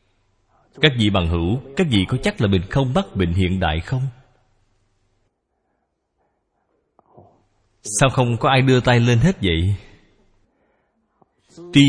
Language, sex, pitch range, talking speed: Vietnamese, male, 95-135 Hz, 130 wpm